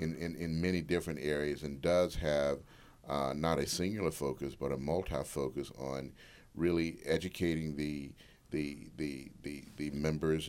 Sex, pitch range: male, 70-80 Hz